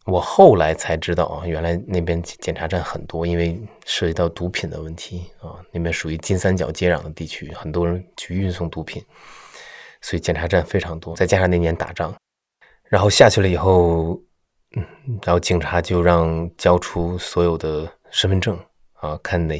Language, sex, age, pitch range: Chinese, male, 20-39, 80-90 Hz